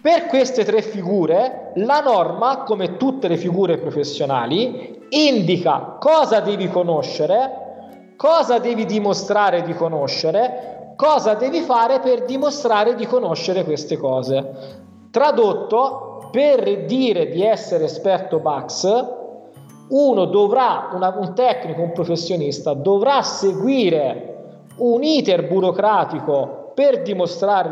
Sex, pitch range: male, 180-255 Hz